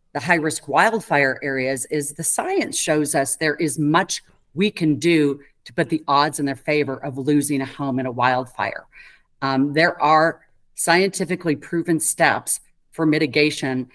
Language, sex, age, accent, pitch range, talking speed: English, female, 40-59, American, 140-170 Hz, 160 wpm